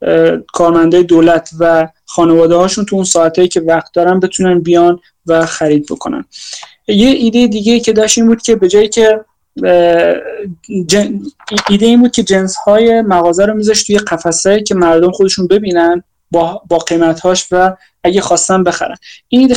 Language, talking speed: Persian, 160 wpm